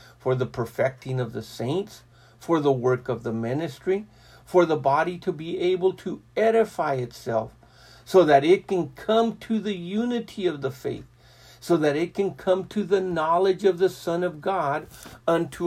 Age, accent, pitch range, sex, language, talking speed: 60-79, American, 135-190 Hz, male, English, 175 wpm